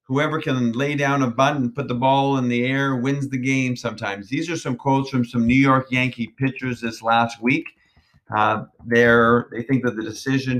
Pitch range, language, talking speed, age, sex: 110-130 Hz, English, 210 wpm, 40-59, male